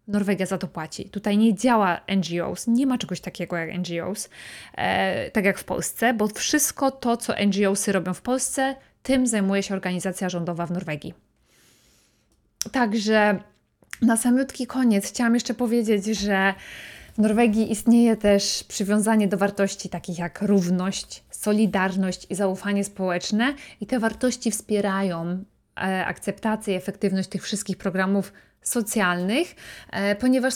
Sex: female